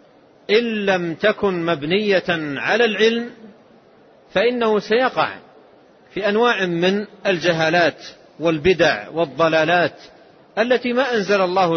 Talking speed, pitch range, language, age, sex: 90 wpm, 160-210 Hz, Arabic, 40-59, male